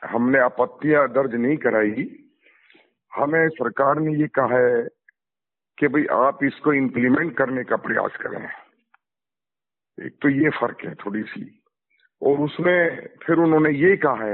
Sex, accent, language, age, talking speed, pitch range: male, native, Hindi, 50-69, 140 wpm, 125-160 Hz